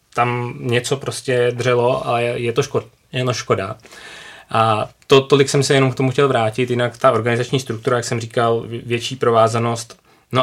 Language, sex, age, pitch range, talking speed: Czech, male, 20-39, 110-125 Hz, 165 wpm